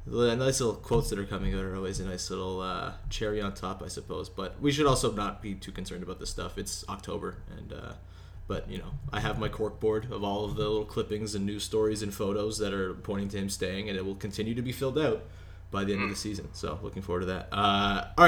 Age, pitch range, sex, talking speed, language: 20-39, 100-130 Hz, male, 265 wpm, English